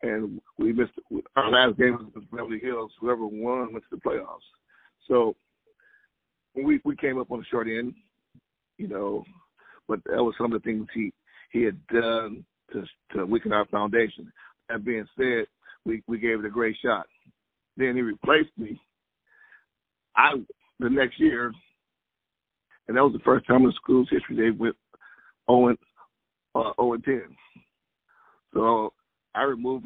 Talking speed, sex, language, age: 160 wpm, male, English, 50-69